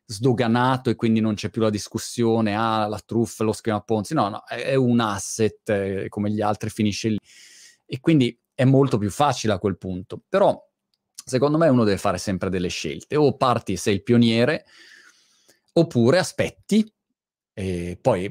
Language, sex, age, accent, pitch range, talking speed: Italian, male, 20-39, native, 100-145 Hz, 170 wpm